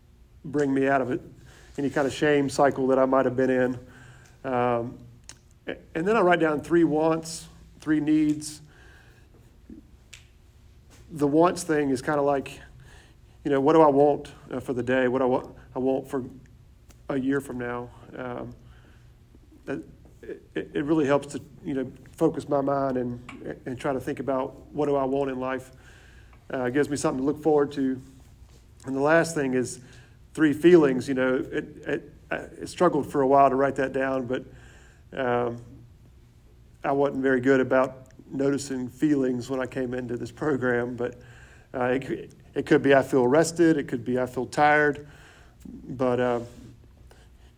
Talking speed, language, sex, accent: 175 wpm, English, male, American